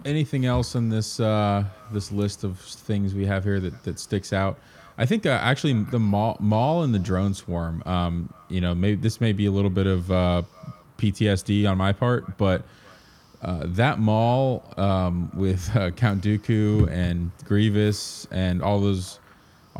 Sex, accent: male, American